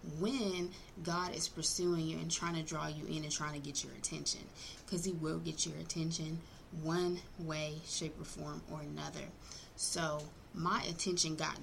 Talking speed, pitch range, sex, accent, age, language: 175 wpm, 155-180 Hz, female, American, 20-39, English